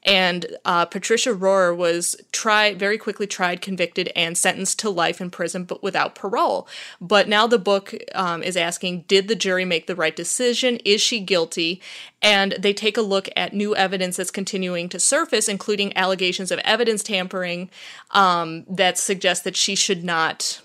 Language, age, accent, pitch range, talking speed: English, 20-39, American, 175-200 Hz, 175 wpm